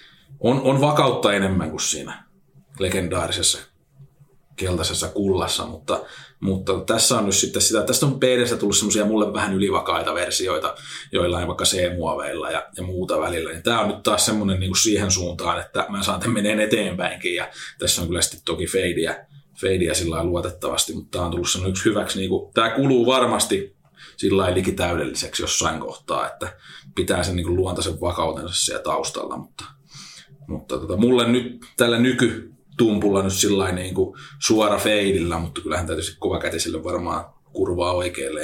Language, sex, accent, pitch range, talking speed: Finnish, male, native, 90-125 Hz, 160 wpm